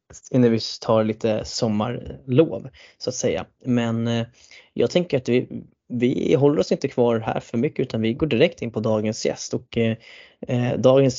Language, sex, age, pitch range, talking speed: Swedish, male, 10-29, 110-125 Hz, 175 wpm